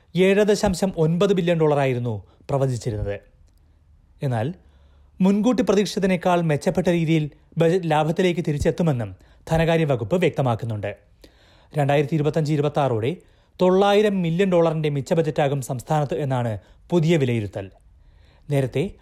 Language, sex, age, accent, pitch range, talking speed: Malayalam, male, 30-49, native, 125-180 Hz, 100 wpm